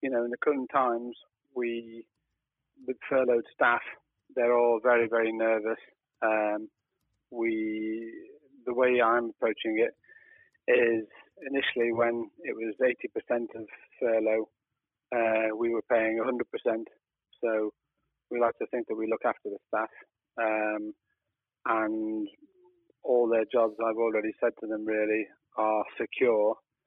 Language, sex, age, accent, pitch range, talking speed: English, male, 30-49, British, 110-125 Hz, 130 wpm